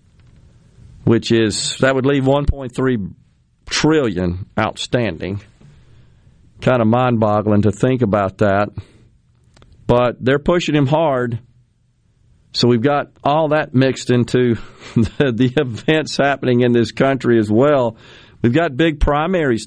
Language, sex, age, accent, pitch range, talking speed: English, male, 50-69, American, 105-125 Hz, 120 wpm